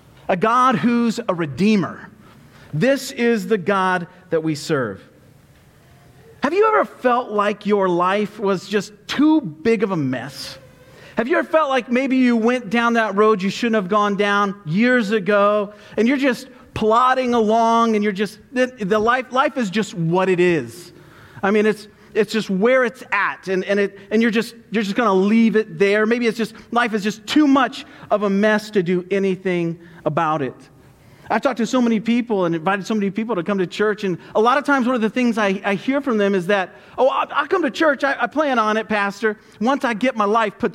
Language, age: English, 40-59